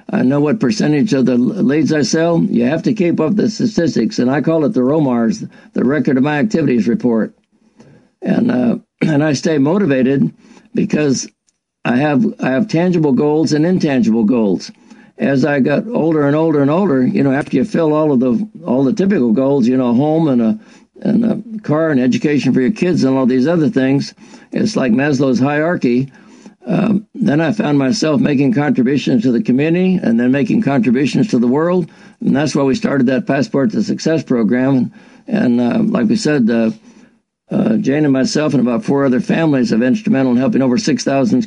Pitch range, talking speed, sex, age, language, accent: 145-225 Hz, 195 wpm, male, 60-79, English, American